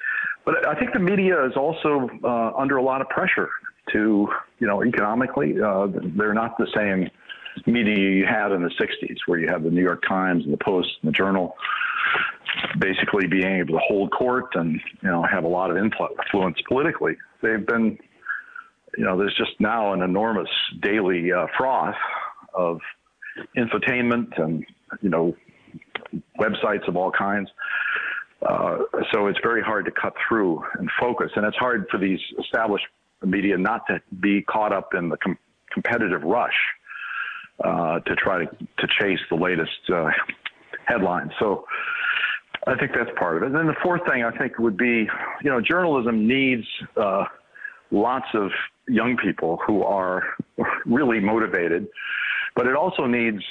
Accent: American